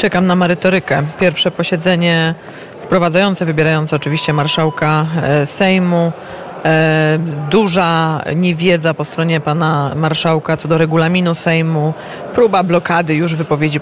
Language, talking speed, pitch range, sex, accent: Polish, 115 wpm, 150-180 Hz, female, native